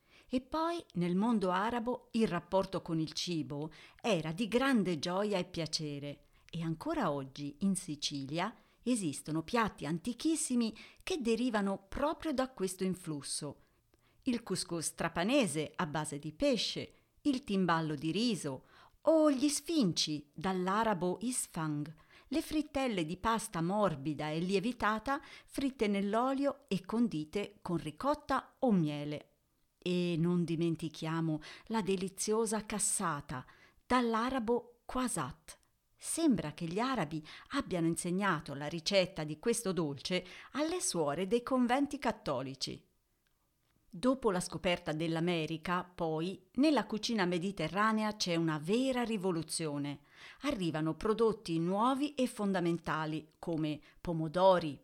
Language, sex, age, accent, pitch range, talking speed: Italian, female, 40-59, native, 160-235 Hz, 115 wpm